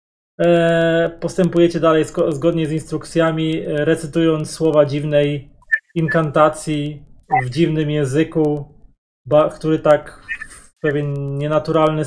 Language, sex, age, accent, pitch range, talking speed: Polish, male, 20-39, native, 145-165 Hz, 85 wpm